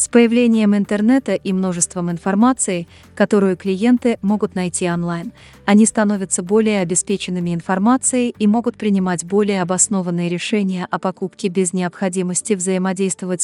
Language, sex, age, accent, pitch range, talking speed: Russian, female, 20-39, native, 180-215 Hz, 120 wpm